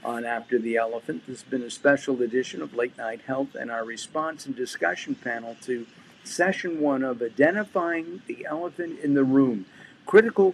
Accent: American